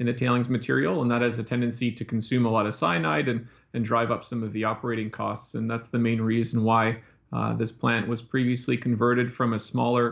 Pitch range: 115-125 Hz